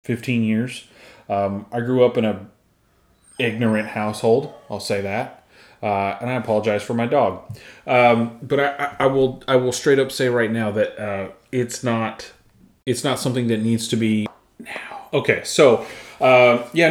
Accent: American